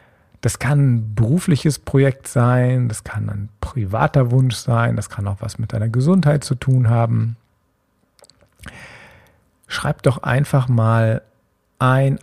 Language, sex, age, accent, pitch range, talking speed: German, male, 50-69, German, 105-125 Hz, 130 wpm